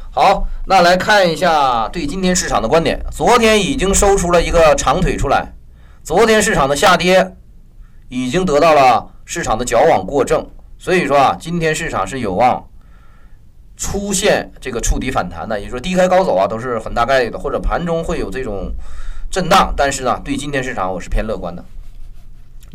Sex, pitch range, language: male, 105-175 Hz, Chinese